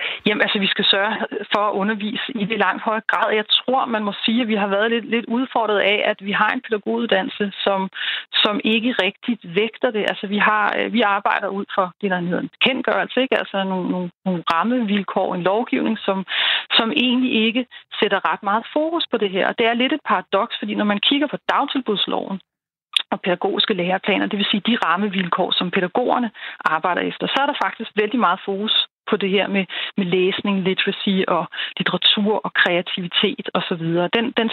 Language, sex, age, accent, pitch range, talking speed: Danish, female, 30-49, native, 190-230 Hz, 195 wpm